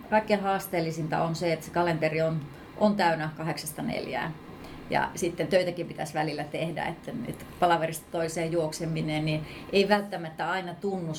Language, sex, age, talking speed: Finnish, female, 30-49, 150 wpm